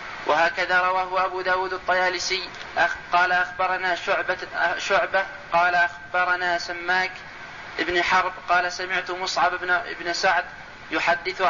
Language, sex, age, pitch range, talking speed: Arabic, male, 30-49, 175-185 Hz, 105 wpm